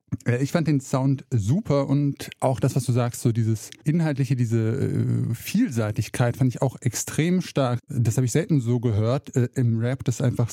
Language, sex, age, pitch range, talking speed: German, male, 20-39, 115-140 Hz, 190 wpm